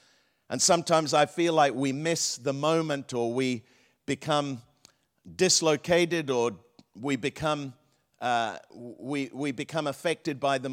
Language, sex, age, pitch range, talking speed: English, male, 50-69, 120-155 Hz, 130 wpm